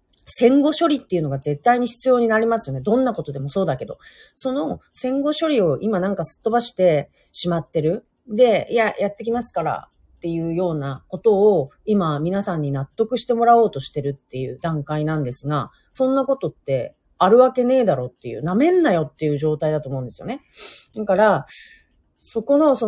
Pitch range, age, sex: 155-230 Hz, 40-59, female